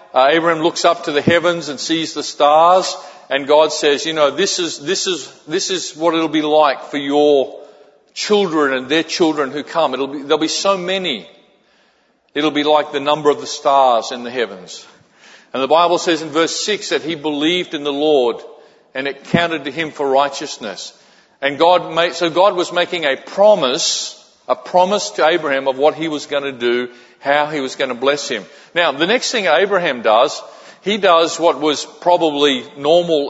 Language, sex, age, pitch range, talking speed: English, male, 40-59, 145-175 Hz, 200 wpm